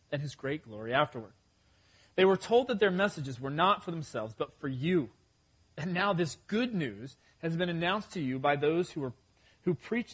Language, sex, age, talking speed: English, male, 30-49, 195 wpm